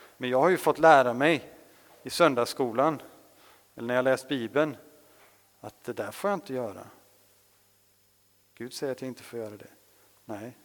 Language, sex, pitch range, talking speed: Swedish, male, 100-140 Hz, 170 wpm